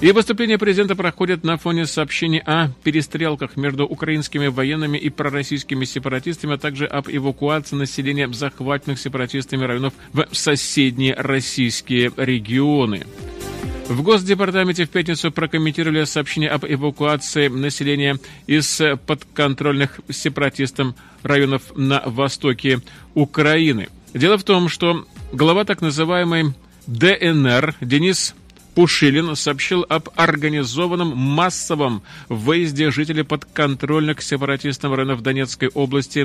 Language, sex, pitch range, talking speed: Russian, male, 135-160 Hz, 105 wpm